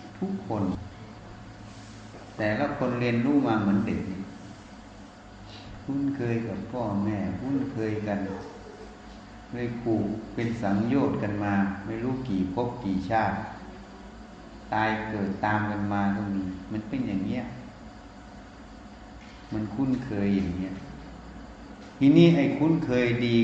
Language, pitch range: Thai, 100-115 Hz